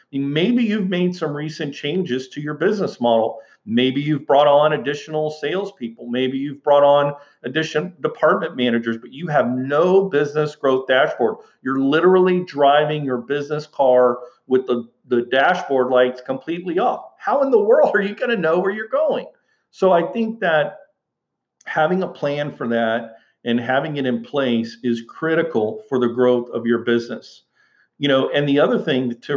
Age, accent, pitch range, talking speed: 50-69, American, 125-155 Hz, 170 wpm